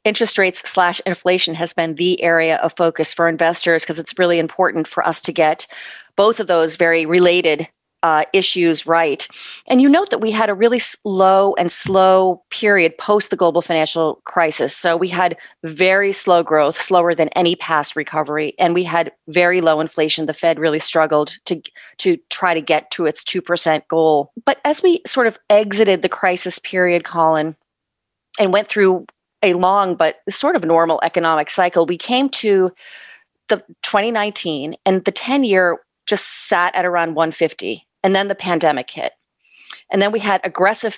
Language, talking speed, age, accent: English, 175 wpm, 30-49, American